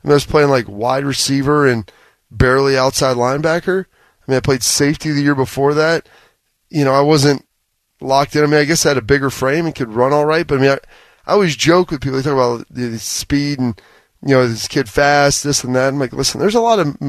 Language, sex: English, male